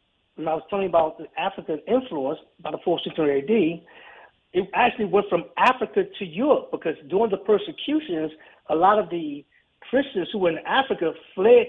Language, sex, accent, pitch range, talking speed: English, male, American, 165-210 Hz, 175 wpm